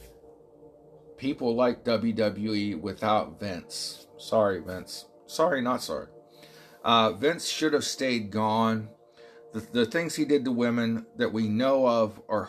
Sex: male